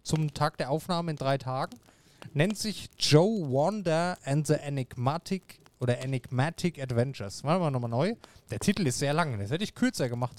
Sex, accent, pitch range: male, German, 135-175 Hz